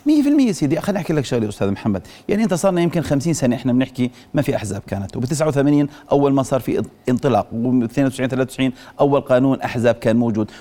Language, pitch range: Arabic, 125-170 Hz